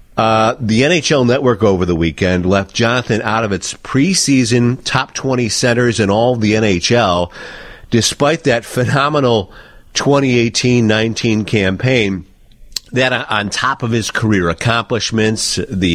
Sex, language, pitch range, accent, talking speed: male, English, 100-125 Hz, American, 130 wpm